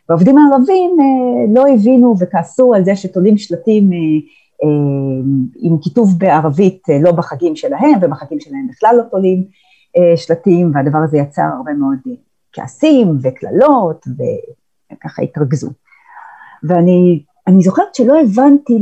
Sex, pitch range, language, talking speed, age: female, 165-255 Hz, Hebrew, 125 wpm, 40-59